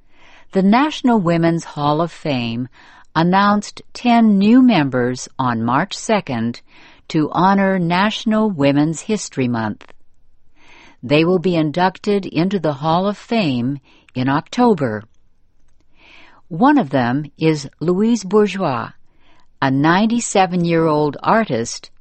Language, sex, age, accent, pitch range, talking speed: English, female, 60-79, American, 135-205 Hz, 105 wpm